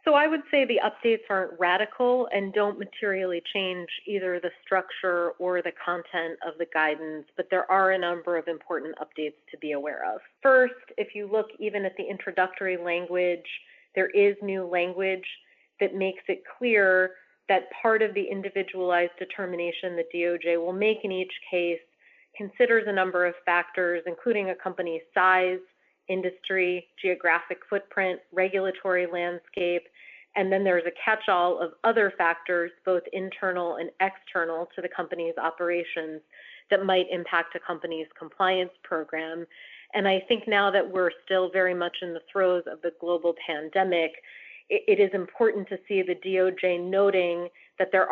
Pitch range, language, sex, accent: 175-195 Hz, English, female, American